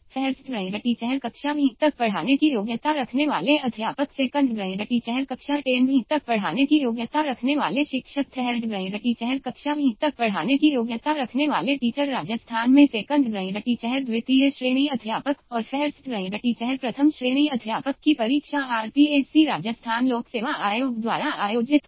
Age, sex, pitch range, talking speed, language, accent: 20-39, female, 230-285 Hz, 130 wpm, Hindi, native